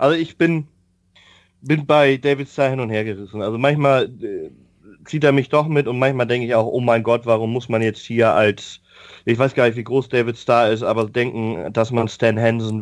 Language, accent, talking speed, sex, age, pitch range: German, German, 235 wpm, male, 30-49, 110-140 Hz